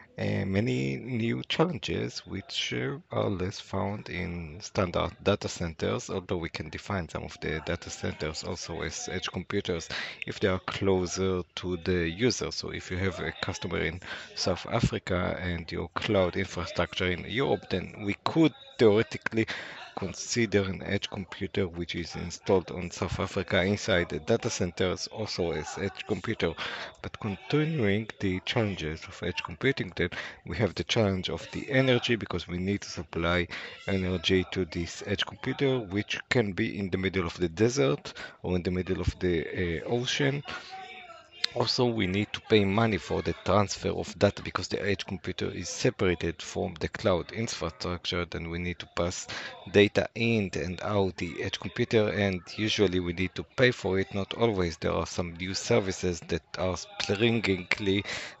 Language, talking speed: English, 165 wpm